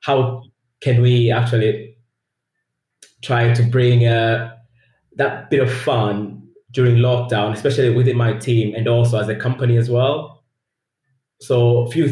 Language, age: English, 20-39